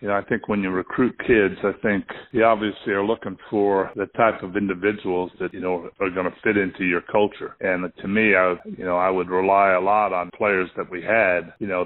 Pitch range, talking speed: 90-105 Hz, 235 wpm